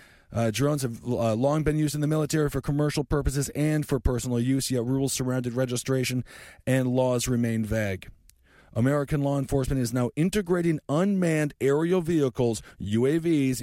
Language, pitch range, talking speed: English, 115-165 Hz, 155 wpm